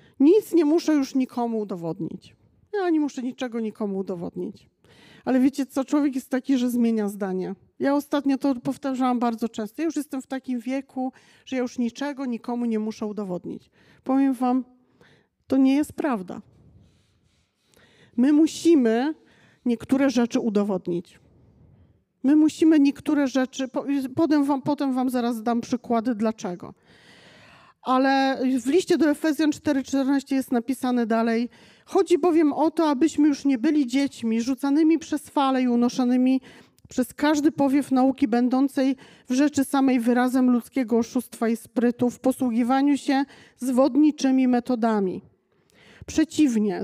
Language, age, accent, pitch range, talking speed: Polish, 40-59, native, 235-285 Hz, 135 wpm